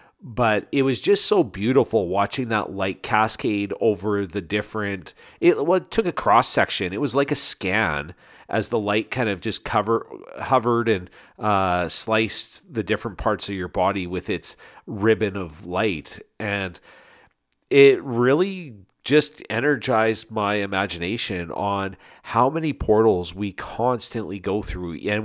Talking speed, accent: 145 wpm, American